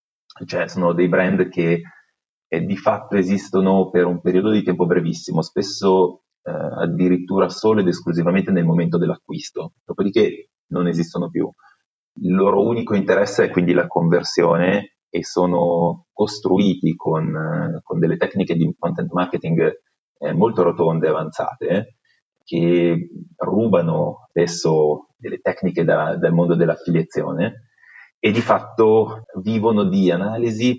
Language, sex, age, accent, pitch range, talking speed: Italian, male, 30-49, native, 85-95 Hz, 130 wpm